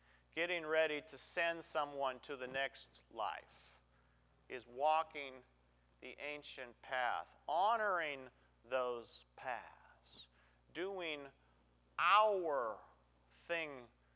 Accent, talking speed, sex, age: American, 85 wpm, male, 40-59